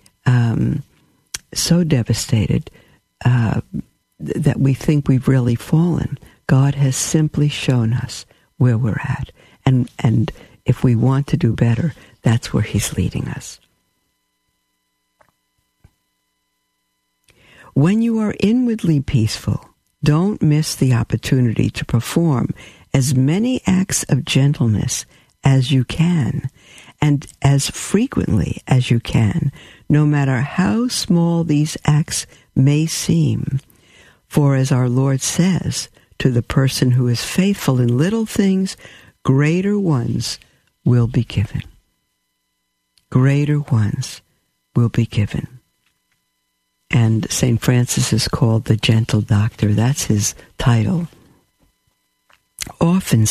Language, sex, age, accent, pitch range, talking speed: English, female, 60-79, American, 115-150 Hz, 115 wpm